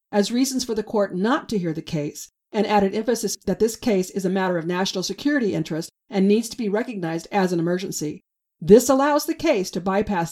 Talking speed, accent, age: 215 wpm, American, 50-69